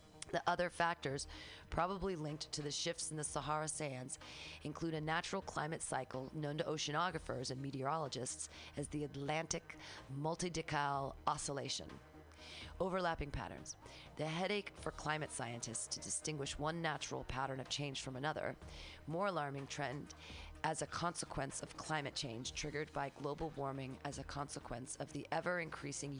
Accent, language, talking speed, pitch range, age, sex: American, English, 140 wpm, 130-155 Hz, 40-59, female